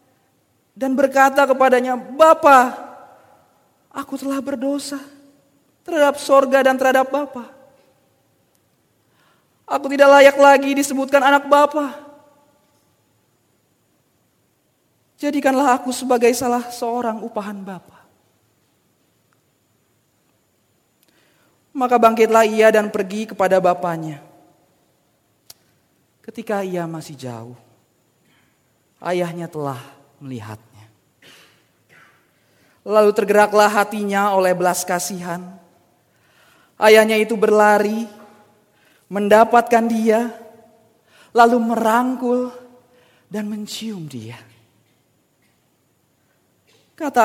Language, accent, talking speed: Indonesian, native, 70 wpm